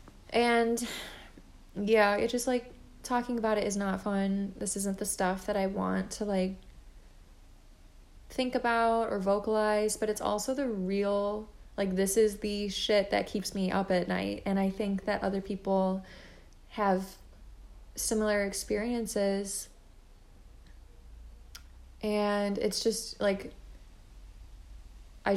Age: 20-39